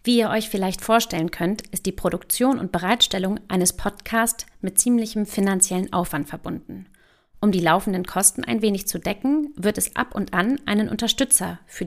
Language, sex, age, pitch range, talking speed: German, female, 40-59, 185-235 Hz, 170 wpm